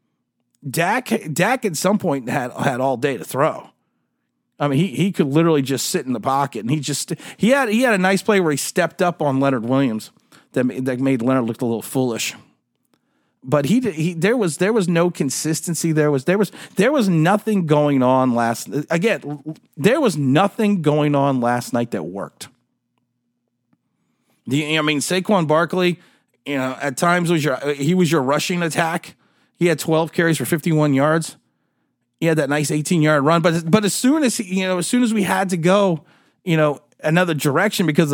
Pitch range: 140-185 Hz